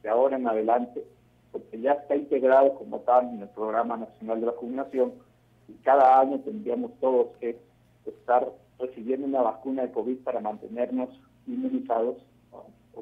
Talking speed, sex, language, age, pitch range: 150 wpm, male, Spanish, 50-69, 120-150 Hz